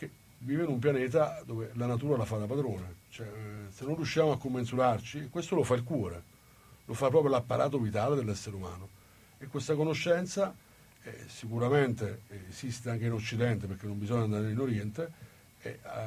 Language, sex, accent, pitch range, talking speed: Italian, male, native, 105-135 Hz, 165 wpm